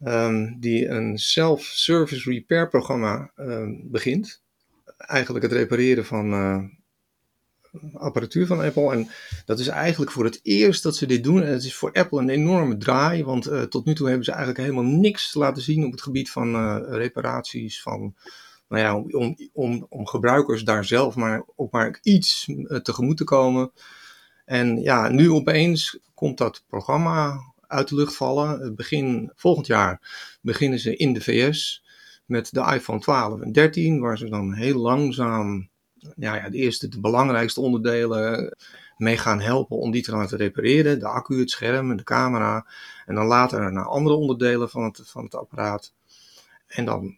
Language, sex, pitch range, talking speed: Dutch, male, 110-145 Hz, 155 wpm